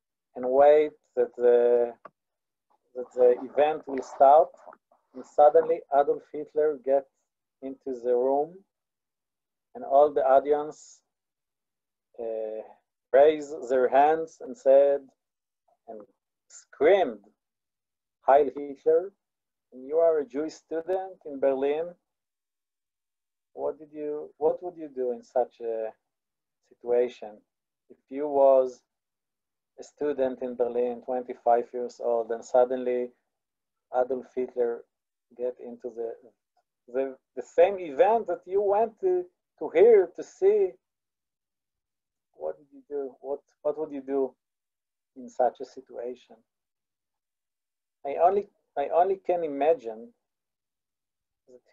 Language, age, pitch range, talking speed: English, 40-59, 125-175 Hz, 115 wpm